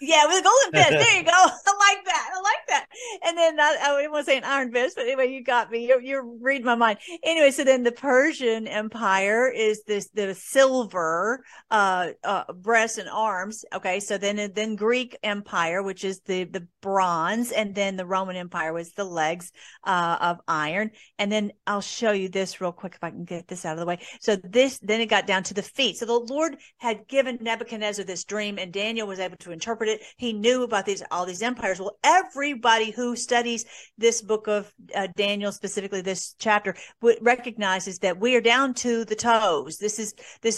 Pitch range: 195-240 Hz